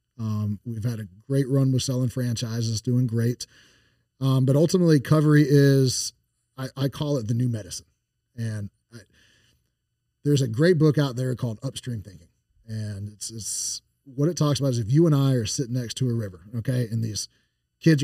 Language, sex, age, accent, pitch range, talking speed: English, male, 40-59, American, 115-145 Hz, 185 wpm